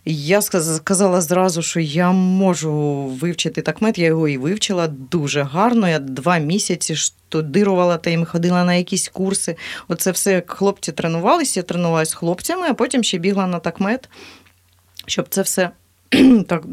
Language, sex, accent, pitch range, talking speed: Ukrainian, female, native, 155-200 Hz, 160 wpm